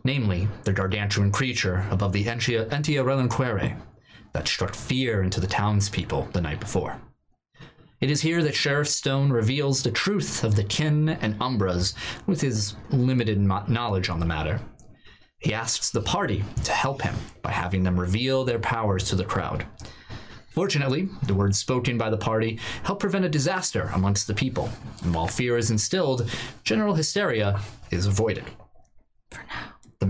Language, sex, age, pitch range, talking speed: English, male, 30-49, 100-135 Hz, 155 wpm